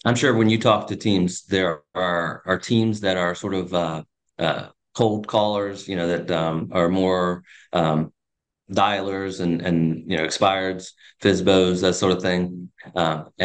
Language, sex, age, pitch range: English, male, 30-49, 85-100 Hz